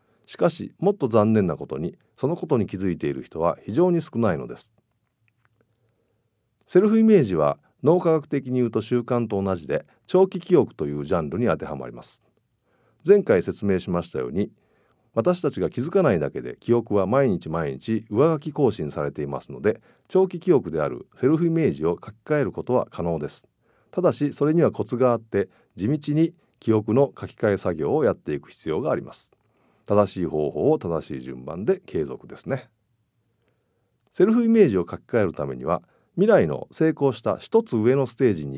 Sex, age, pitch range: male, 50-69, 105-155 Hz